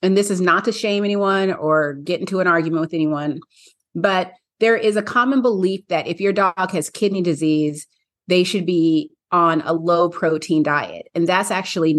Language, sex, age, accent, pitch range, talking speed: English, female, 30-49, American, 160-200 Hz, 185 wpm